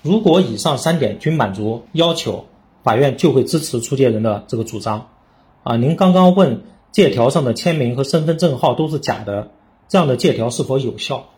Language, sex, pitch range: Chinese, male, 115-165 Hz